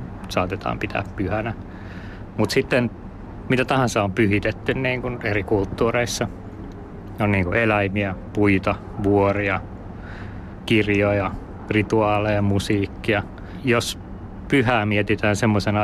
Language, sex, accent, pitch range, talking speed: Finnish, male, native, 95-110 Hz, 90 wpm